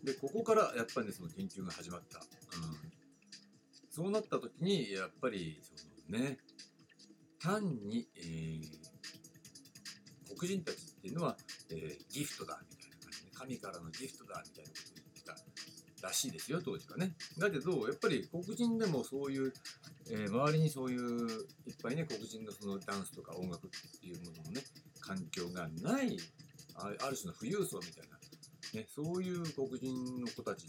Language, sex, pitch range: Japanese, male, 125-190 Hz